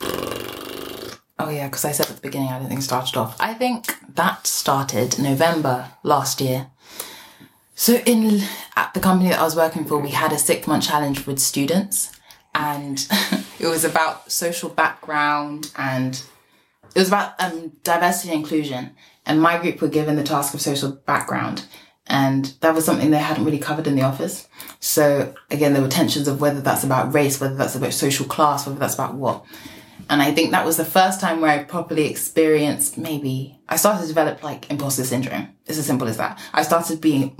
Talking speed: 195 wpm